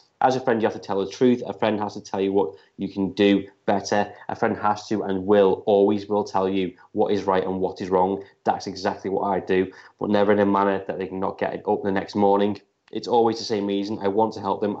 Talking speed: 270 wpm